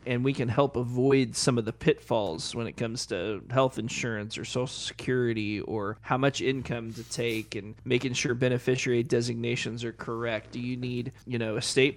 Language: English